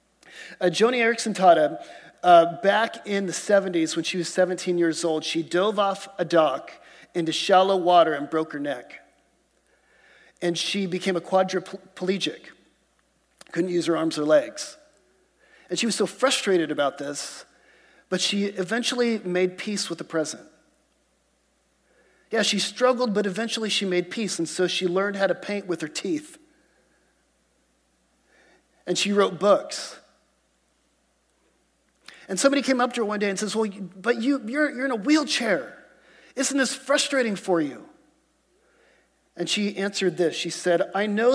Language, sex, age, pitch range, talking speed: English, male, 40-59, 175-225 Hz, 150 wpm